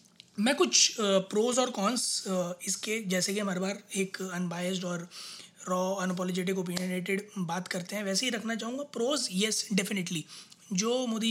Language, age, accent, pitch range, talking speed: Hindi, 20-39, native, 195-240 Hz, 155 wpm